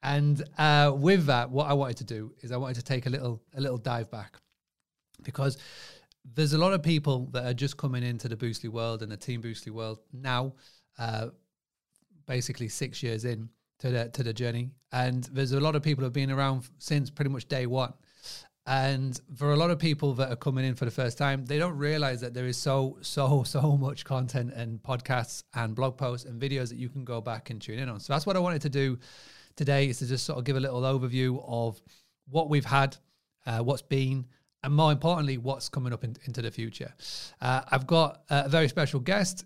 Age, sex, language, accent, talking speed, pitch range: 30-49, male, English, British, 220 wpm, 125-145 Hz